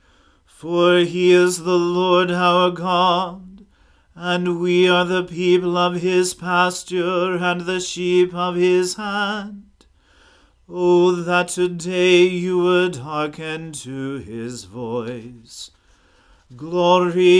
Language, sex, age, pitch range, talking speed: English, male, 40-59, 150-180 Hz, 105 wpm